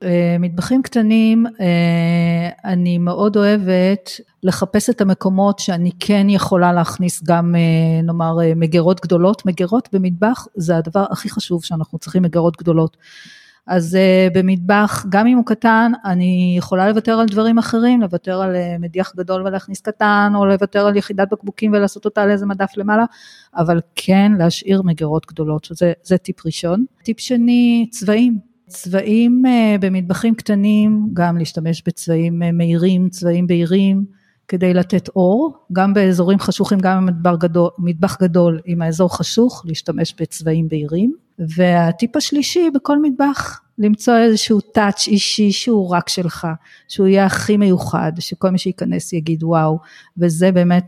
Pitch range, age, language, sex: 170-205 Hz, 40-59, Hebrew, female